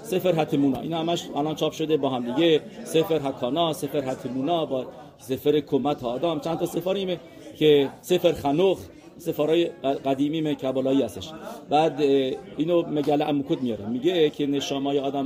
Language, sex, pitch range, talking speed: English, male, 140-180 Hz, 150 wpm